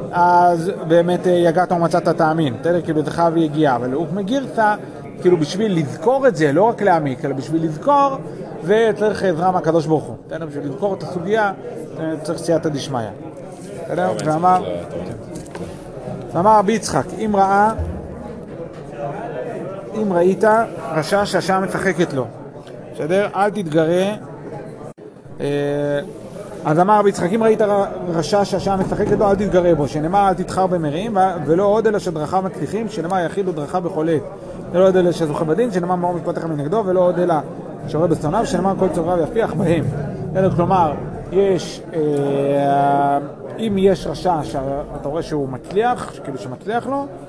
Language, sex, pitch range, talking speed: Hebrew, male, 155-195 Hz, 135 wpm